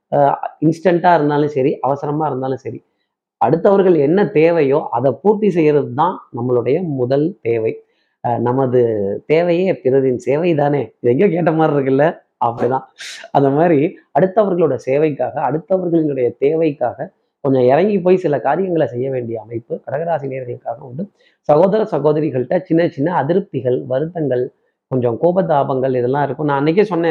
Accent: native